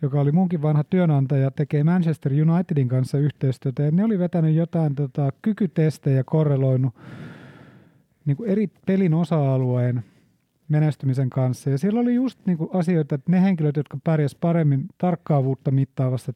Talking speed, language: 140 wpm, Finnish